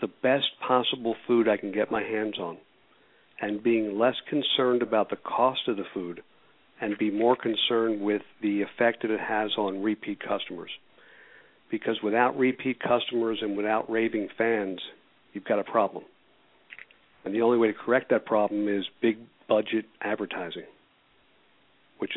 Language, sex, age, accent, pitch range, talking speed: English, male, 50-69, American, 105-125 Hz, 155 wpm